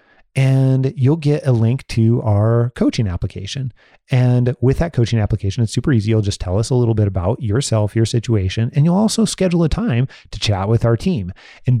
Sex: male